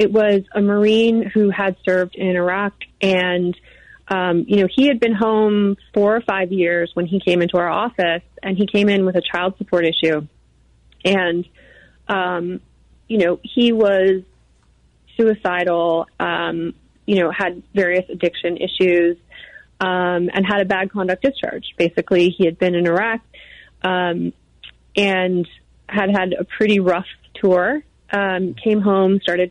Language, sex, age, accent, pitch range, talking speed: English, female, 30-49, American, 175-205 Hz, 155 wpm